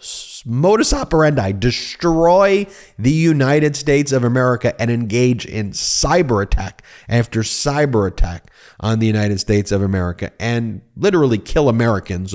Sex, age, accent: male, 30-49, American